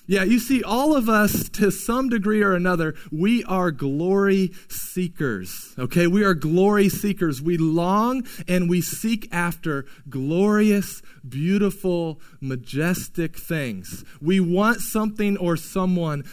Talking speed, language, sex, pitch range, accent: 130 wpm, English, male, 160-195 Hz, American